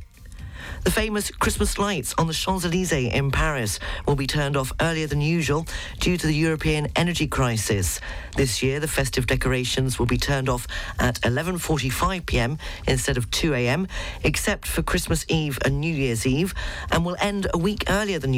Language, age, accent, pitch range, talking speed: English, 40-59, British, 120-150 Hz, 165 wpm